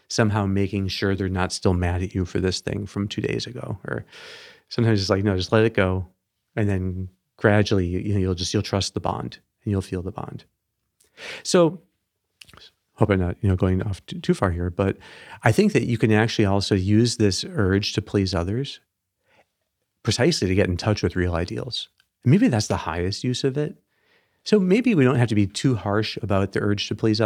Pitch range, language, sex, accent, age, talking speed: 95-115 Hz, English, male, American, 40-59, 205 wpm